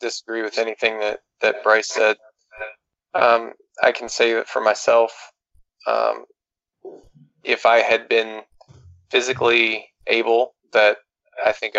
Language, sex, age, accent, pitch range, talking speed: English, male, 20-39, American, 105-115 Hz, 120 wpm